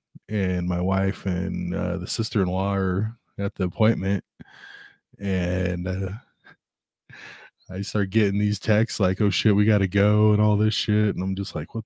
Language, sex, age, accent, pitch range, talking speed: English, male, 20-39, American, 95-110 Hz, 175 wpm